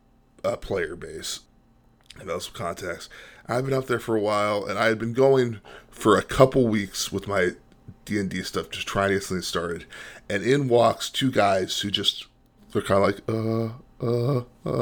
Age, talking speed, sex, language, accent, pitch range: 20-39, 180 wpm, male, English, American, 100-115 Hz